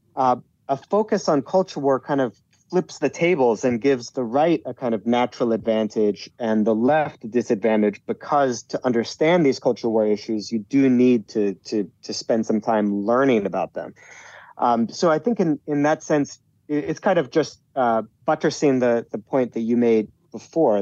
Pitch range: 110-140 Hz